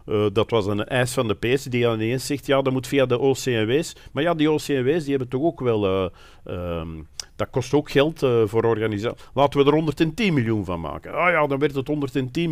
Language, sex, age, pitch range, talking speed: Dutch, male, 50-69, 95-120 Hz, 235 wpm